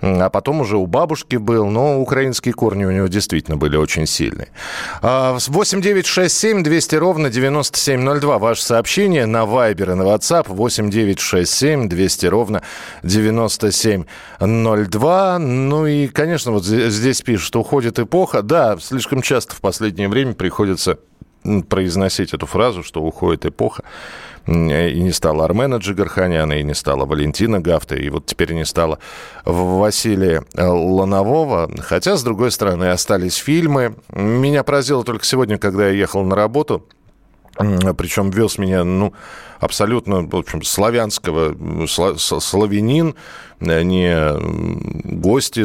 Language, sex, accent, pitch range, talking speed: Russian, male, native, 90-120 Hz, 125 wpm